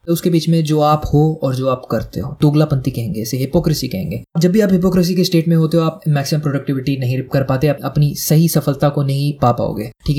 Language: Hindi